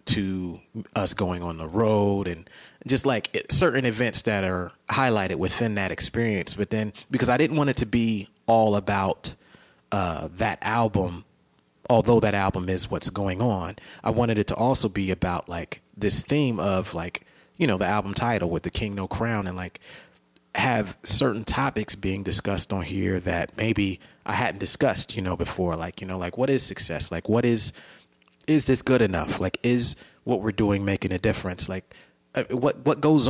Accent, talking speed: American, 185 wpm